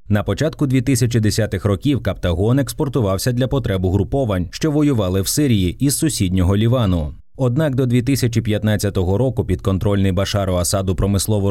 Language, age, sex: Ukrainian, 20-39, male